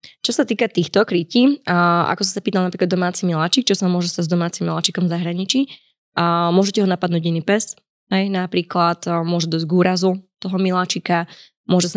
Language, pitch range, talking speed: Slovak, 170-190 Hz, 190 wpm